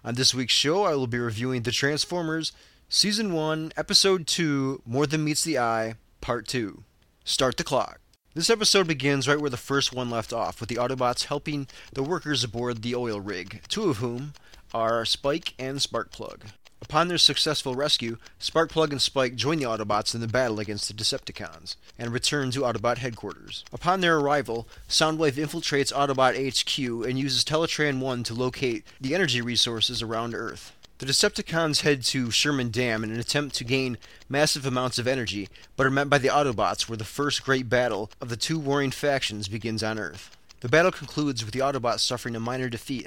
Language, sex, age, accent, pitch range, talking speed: English, male, 30-49, American, 115-145 Hz, 185 wpm